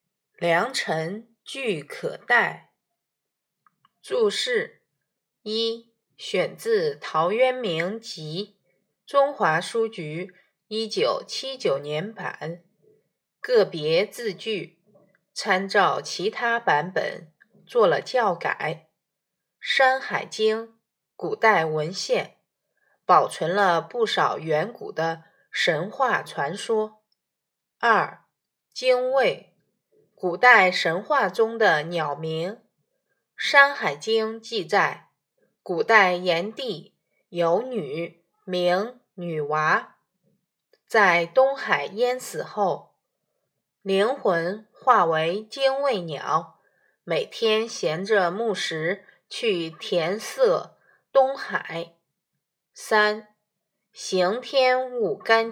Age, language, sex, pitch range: 20-39, Chinese, female, 175-250 Hz